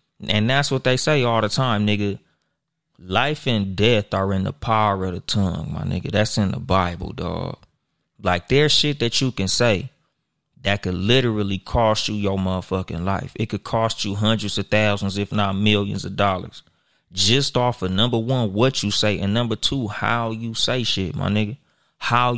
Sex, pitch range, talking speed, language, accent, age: male, 100-130 Hz, 190 wpm, English, American, 30-49